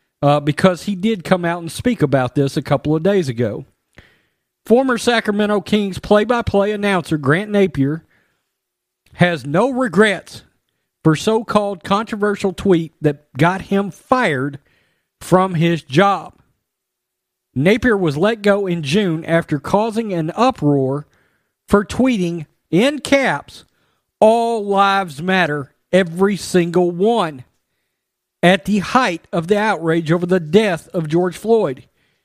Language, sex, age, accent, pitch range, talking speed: English, male, 40-59, American, 155-205 Hz, 125 wpm